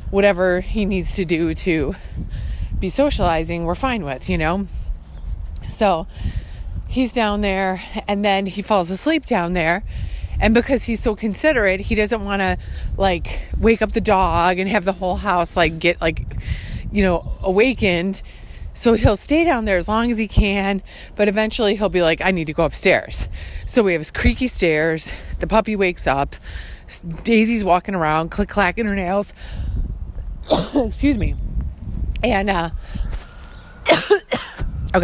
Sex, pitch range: female, 160-215 Hz